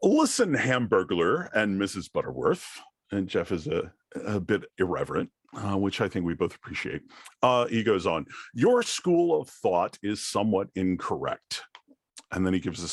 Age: 40-59